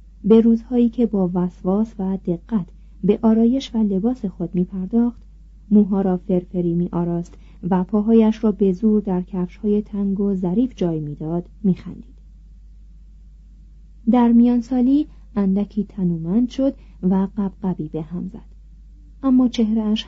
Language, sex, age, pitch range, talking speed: Persian, female, 30-49, 180-230 Hz, 140 wpm